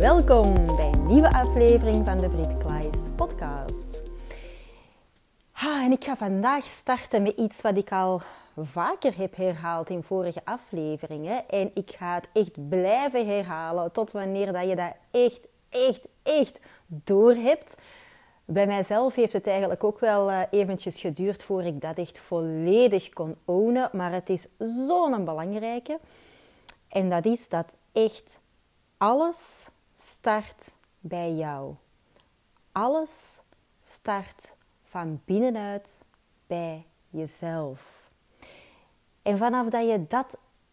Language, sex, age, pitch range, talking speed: Dutch, female, 30-49, 175-235 Hz, 125 wpm